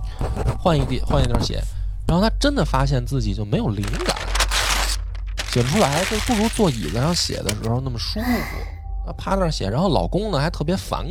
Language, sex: Chinese, male